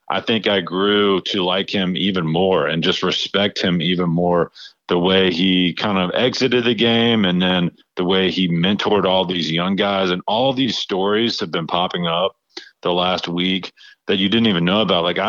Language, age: English, 40-59